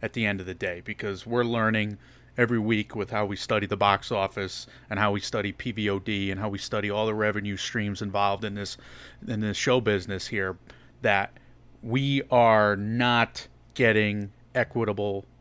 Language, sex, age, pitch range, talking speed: English, male, 30-49, 105-125 Hz, 175 wpm